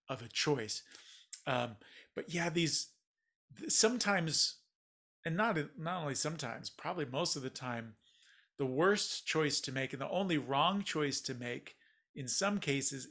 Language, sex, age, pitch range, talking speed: English, male, 40-59, 130-160 Hz, 150 wpm